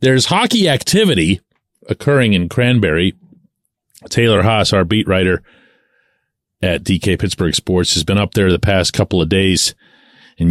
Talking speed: 145 wpm